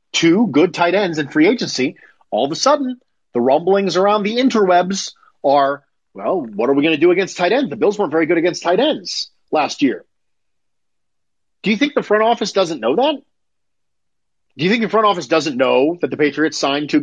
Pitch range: 140-205 Hz